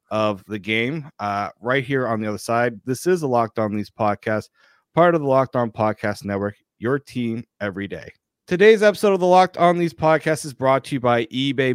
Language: English